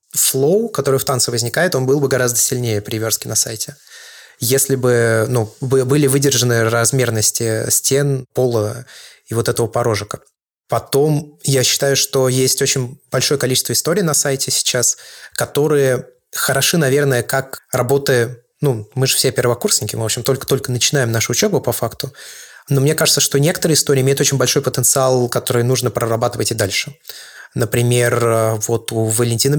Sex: male